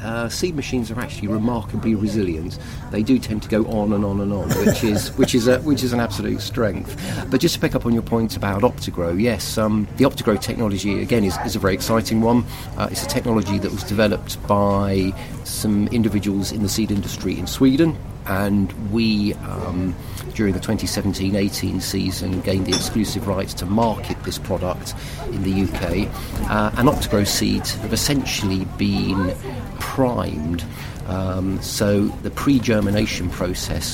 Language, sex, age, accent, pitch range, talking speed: English, male, 40-59, British, 95-115 Hz, 170 wpm